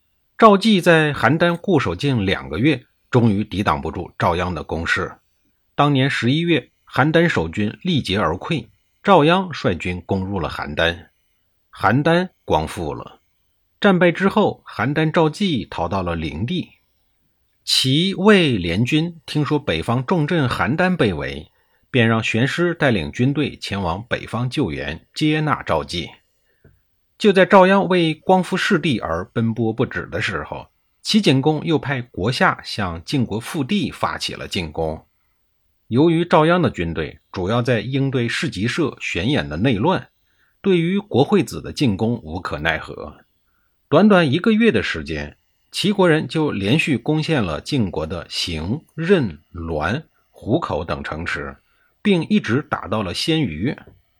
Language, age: Chinese, 50-69